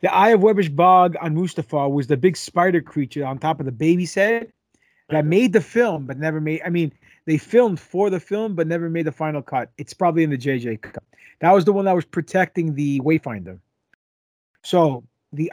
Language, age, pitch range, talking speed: English, 30-49, 150-195 Hz, 215 wpm